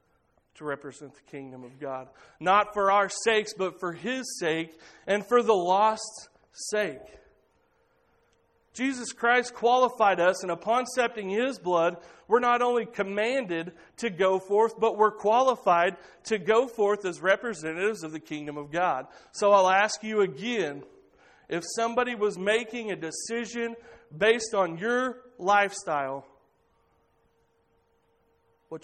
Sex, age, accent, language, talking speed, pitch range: male, 40-59, American, English, 135 wpm, 165-235 Hz